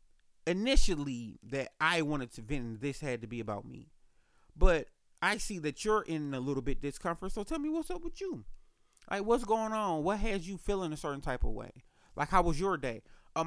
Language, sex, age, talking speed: English, male, 30-49, 215 wpm